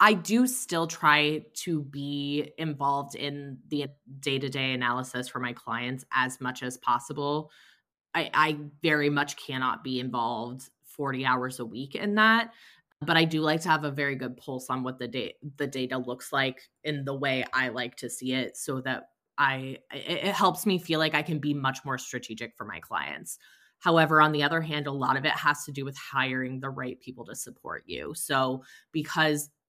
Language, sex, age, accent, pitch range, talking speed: English, female, 20-39, American, 130-155 Hz, 195 wpm